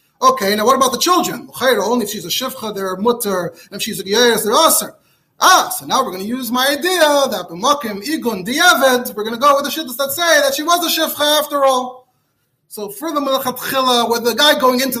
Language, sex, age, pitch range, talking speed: English, male, 30-49, 205-285 Hz, 220 wpm